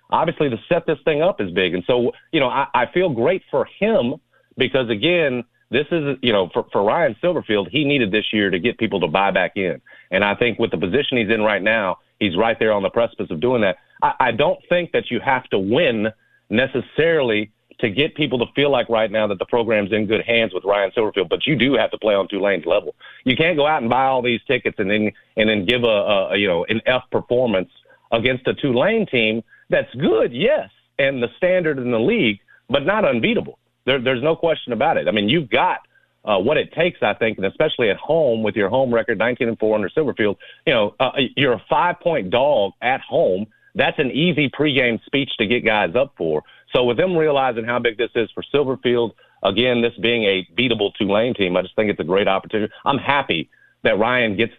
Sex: male